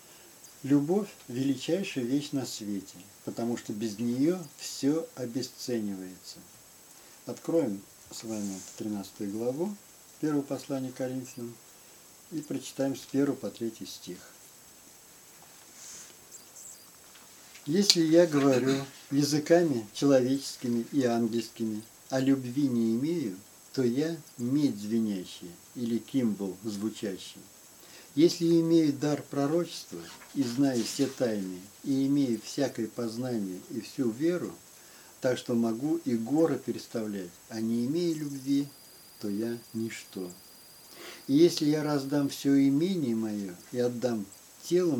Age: 50-69